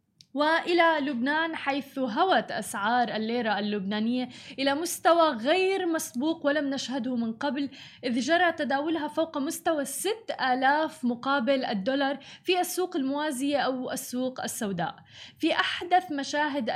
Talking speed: 115 wpm